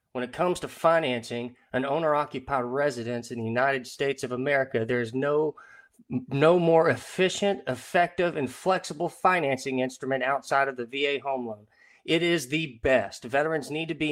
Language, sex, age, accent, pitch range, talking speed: English, male, 30-49, American, 130-165 Hz, 160 wpm